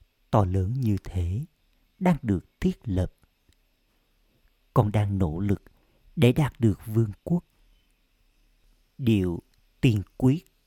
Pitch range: 100-135 Hz